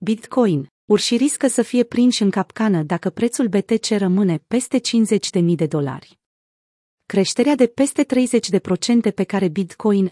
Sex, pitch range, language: female, 180-225 Hz, Romanian